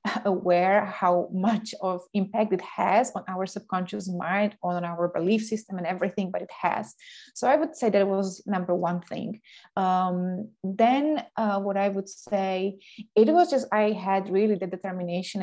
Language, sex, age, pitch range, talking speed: English, female, 20-39, 180-210 Hz, 175 wpm